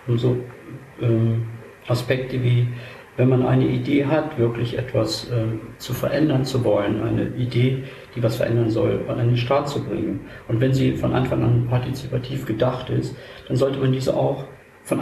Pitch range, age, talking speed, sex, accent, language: 115-135 Hz, 50-69, 170 wpm, male, German, German